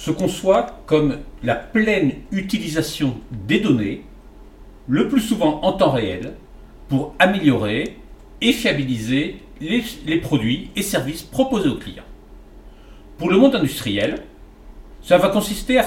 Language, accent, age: French, French, 50-69